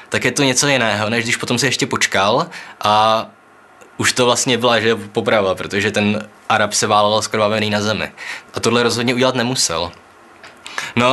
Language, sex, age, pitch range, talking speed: Czech, male, 20-39, 110-130 Hz, 175 wpm